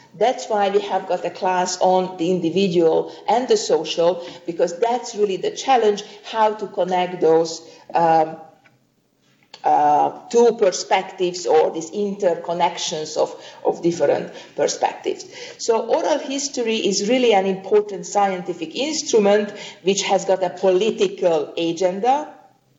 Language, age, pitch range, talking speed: English, 50-69, 180-300 Hz, 125 wpm